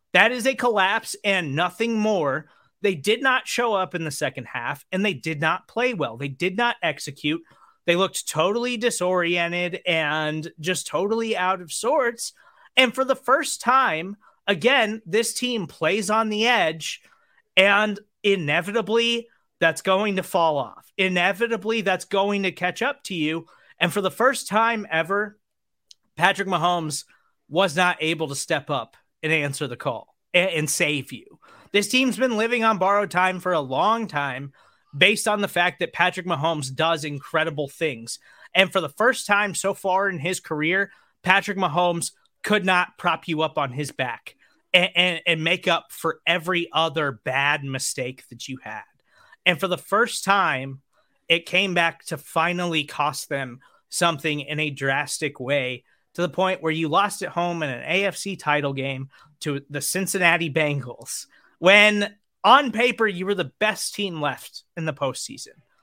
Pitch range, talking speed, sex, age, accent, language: 155-205 Hz, 170 wpm, male, 30-49, American, English